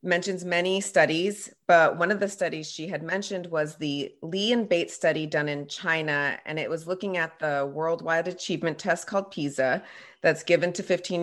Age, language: 30-49, English